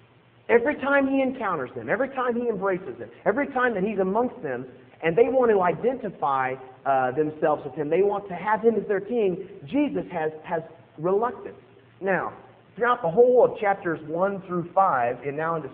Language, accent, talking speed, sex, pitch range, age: English, American, 185 wpm, male, 155-230 Hz, 40-59